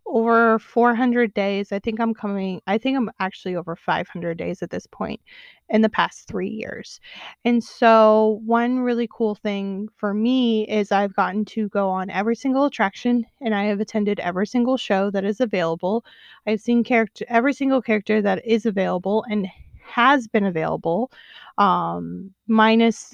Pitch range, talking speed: 200-240 Hz, 165 wpm